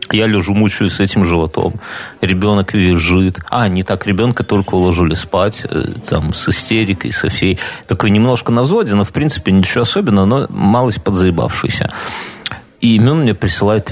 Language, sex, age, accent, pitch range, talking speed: Russian, male, 30-49, native, 95-115 Hz, 155 wpm